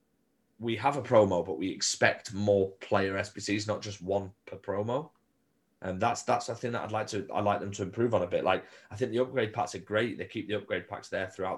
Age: 20-39